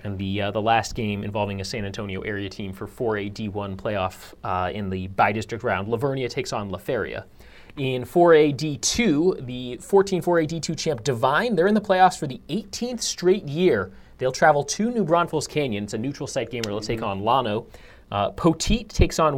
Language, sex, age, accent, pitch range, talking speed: English, male, 30-49, American, 105-160 Hz, 190 wpm